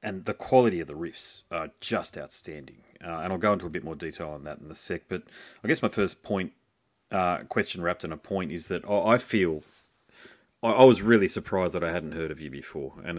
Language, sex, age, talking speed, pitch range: English, male, 30-49, 230 wpm, 80-100 Hz